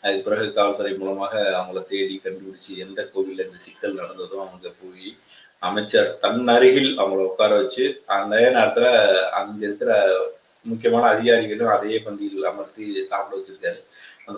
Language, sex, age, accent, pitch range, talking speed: Tamil, male, 30-49, native, 115-175 Hz, 135 wpm